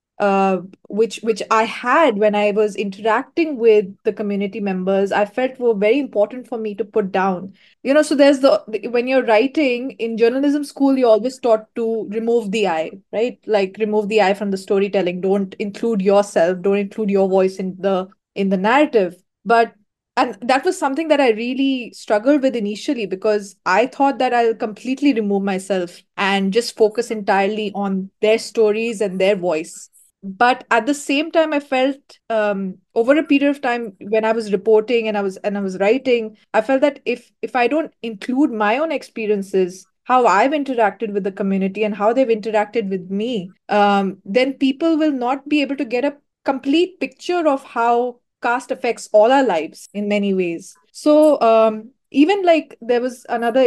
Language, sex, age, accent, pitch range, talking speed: English, female, 20-39, Indian, 200-255 Hz, 185 wpm